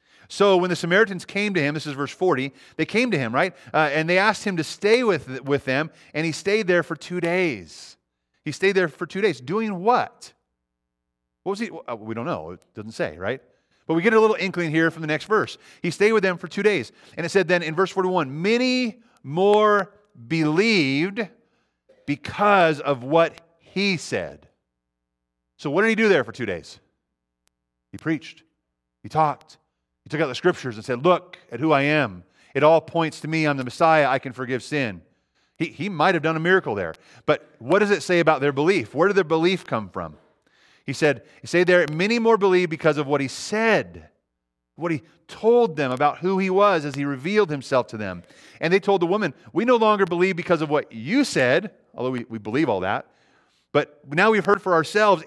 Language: English